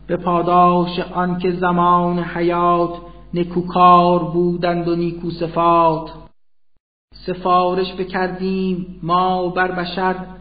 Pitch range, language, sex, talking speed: 175-185 Hz, Persian, male, 80 wpm